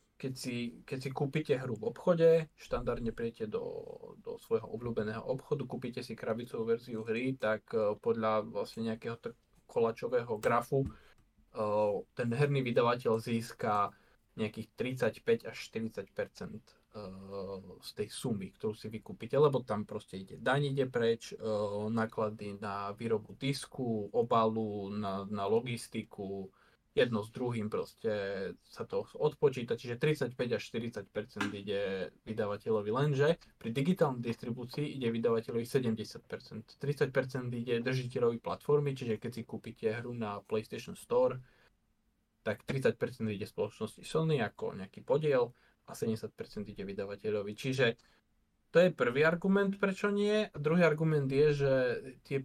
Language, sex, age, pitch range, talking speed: Slovak, male, 20-39, 110-145 Hz, 130 wpm